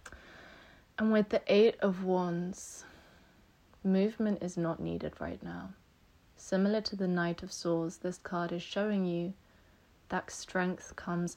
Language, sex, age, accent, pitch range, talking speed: English, female, 20-39, British, 155-180 Hz, 135 wpm